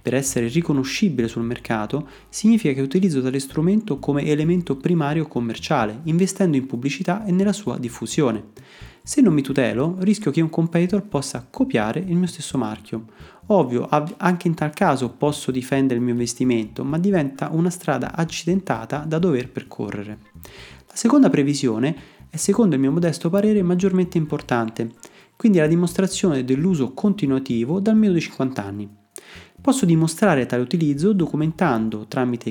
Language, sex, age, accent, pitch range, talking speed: Italian, male, 30-49, native, 125-175 Hz, 145 wpm